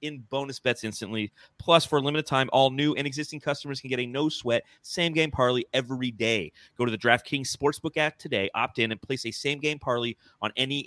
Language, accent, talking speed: English, American, 225 wpm